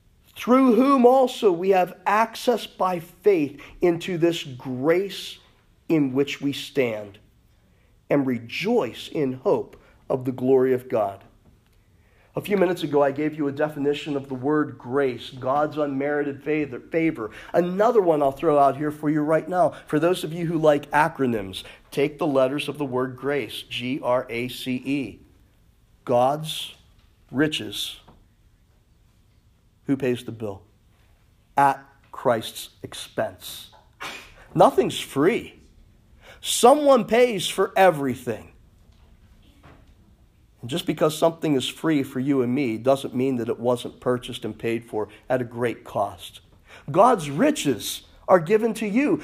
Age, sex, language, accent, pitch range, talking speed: 40-59, male, English, American, 115-180 Hz, 130 wpm